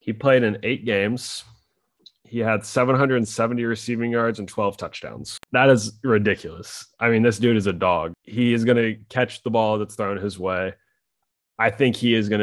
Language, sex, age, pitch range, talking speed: English, male, 20-39, 90-105 Hz, 190 wpm